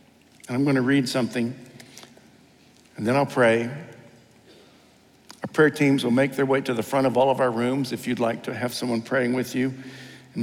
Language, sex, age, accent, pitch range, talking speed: English, male, 60-79, American, 115-140 Hz, 200 wpm